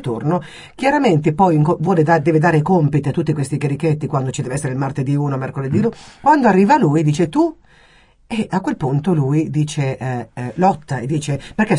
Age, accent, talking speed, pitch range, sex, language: 50-69, native, 190 wpm, 140-190 Hz, female, Italian